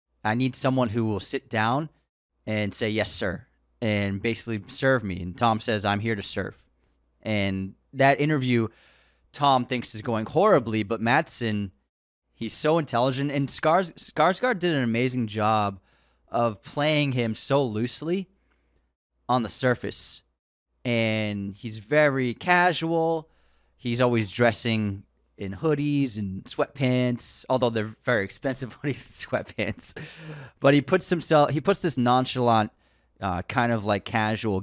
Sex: male